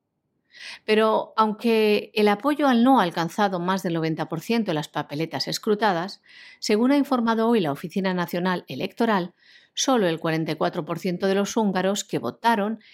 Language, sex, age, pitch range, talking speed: Spanish, female, 50-69, 180-235 Hz, 145 wpm